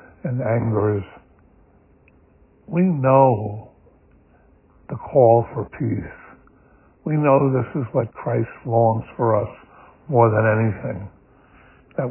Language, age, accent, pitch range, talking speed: English, 60-79, American, 105-125 Hz, 105 wpm